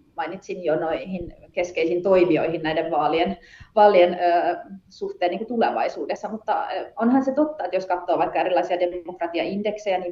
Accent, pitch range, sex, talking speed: native, 175-200 Hz, female, 140 wpm